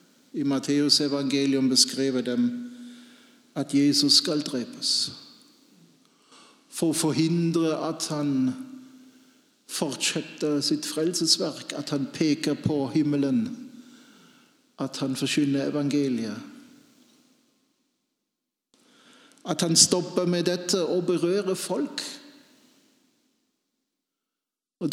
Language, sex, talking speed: English, male, 80 wpm